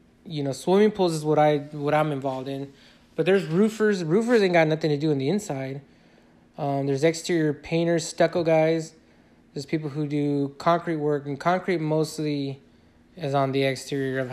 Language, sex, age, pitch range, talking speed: English, male, 20-39, 140-170 Hz, 180 wpm